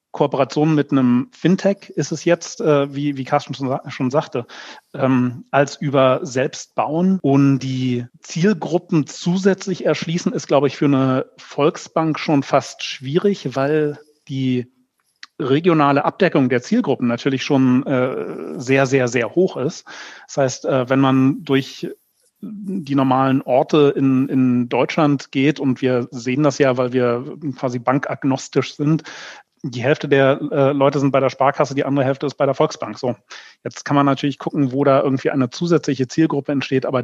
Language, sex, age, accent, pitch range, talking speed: German, male, 40-59, German, 130-155 Hz, 160 wpm